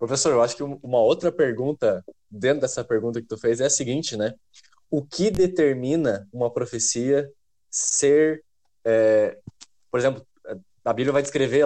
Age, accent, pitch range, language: 20-39, Brazilian, 120-170 Hz, Portuguese